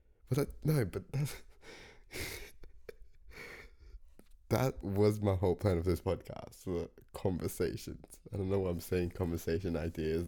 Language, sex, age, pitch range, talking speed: English, male, 20-39, 80-105 Hz, 125 wpm